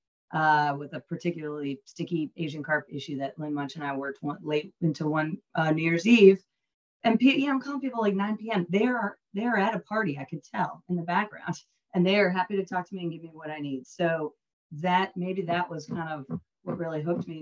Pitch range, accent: 140-170 Hz, American